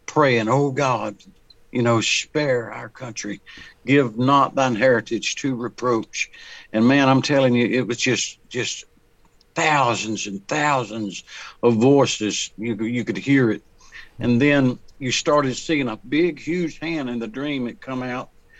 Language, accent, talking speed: English, American, 155 wpm